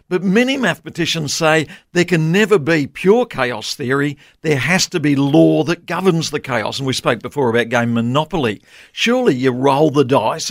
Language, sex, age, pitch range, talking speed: English, male, 50-69, 140-190 Hz, 185 wpm